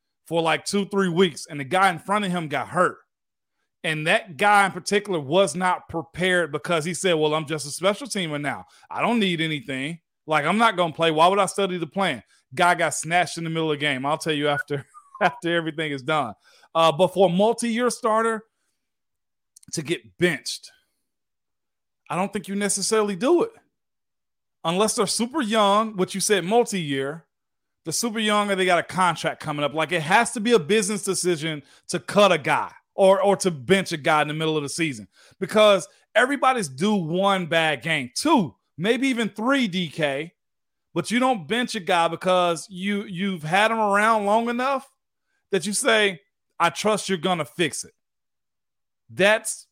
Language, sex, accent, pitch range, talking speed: English, male, American, 160-205 Hz, 190 wpm